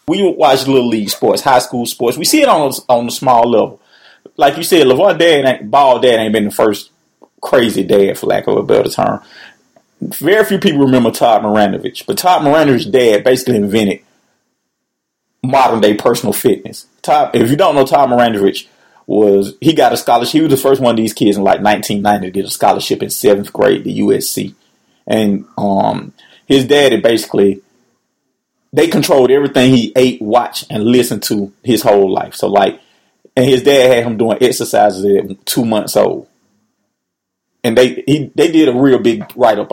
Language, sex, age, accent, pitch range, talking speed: English, male, 30-49, American, 105-130 Hz, 190 wpm